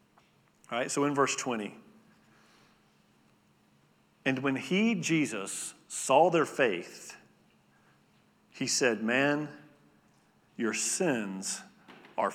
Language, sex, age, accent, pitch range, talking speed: English, male, 40-59, American, 120-155 Hz, 90 wpm